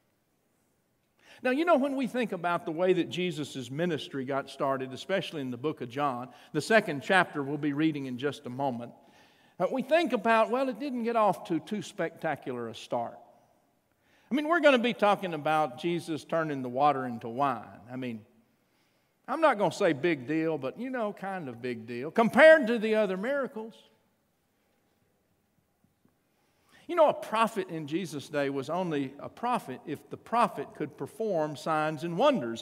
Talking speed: 180 wpm